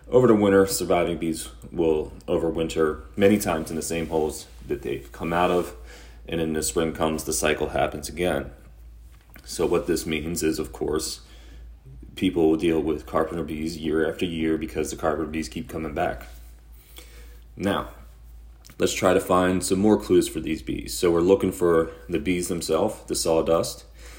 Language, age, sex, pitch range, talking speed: English, 30-49, male, 70-85 Hz, 175 wpm